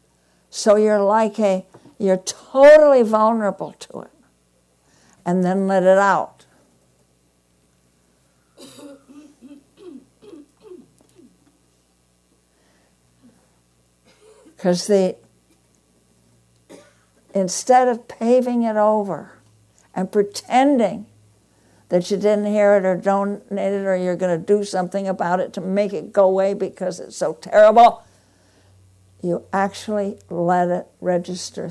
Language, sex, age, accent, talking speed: English, female, 60-79, American, 100 wpm